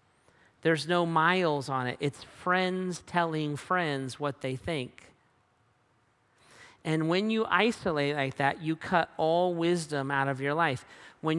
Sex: male